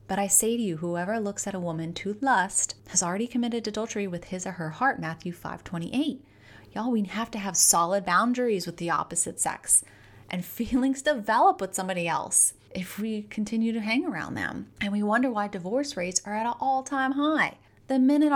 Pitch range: 175-240 Hz